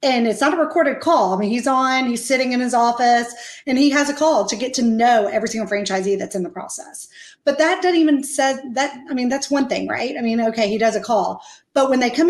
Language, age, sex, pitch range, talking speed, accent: English, 40-59, female, 215-280 Hz, 265 wpm, American